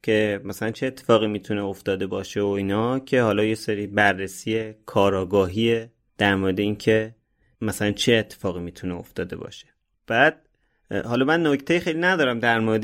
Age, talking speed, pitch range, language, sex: 30-49, 155 wpm, 105-135 Hz, Persian, male